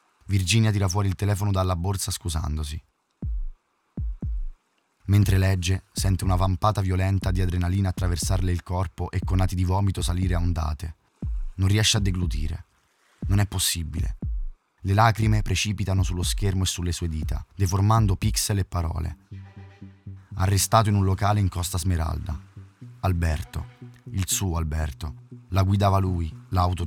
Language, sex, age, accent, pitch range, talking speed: Italian, male, 20-39, native, 85-100 Hz, 140 wpm